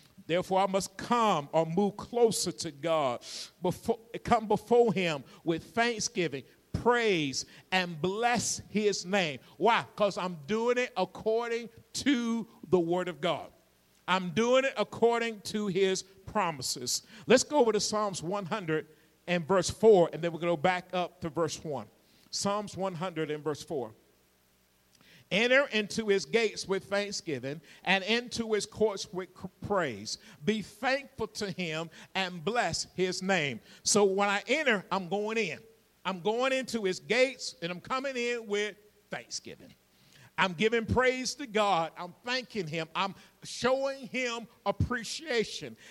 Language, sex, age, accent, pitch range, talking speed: English, male, 50-69, American, 170-225 Hz, 145 wpm